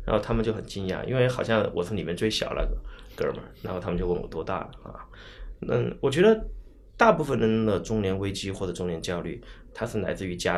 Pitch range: 95-125 Hz